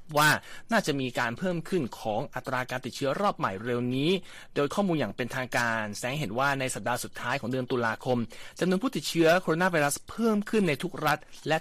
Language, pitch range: Thai, 125-170 Hz